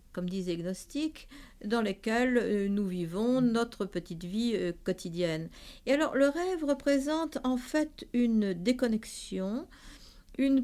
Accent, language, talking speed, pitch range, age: French, French, 130 wpm, 185-270 Hz, 50-69